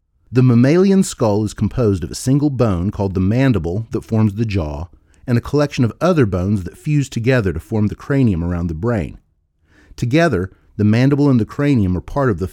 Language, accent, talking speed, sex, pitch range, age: English, American, 200 wpm, male, 90-130 Hz, 40-59